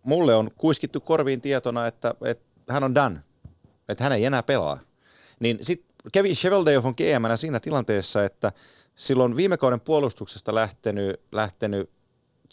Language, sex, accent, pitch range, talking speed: Finnish, male, native, 105-145 Hz, 140 wpm